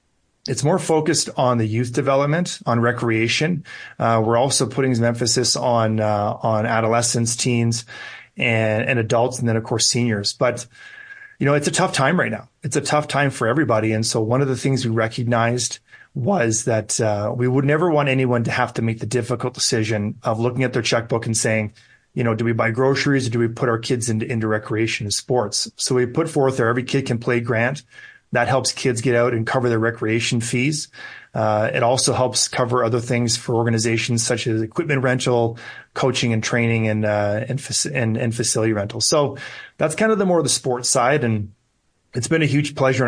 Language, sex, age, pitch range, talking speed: English, male, 30-49, 115-130 Hz, 210 wpm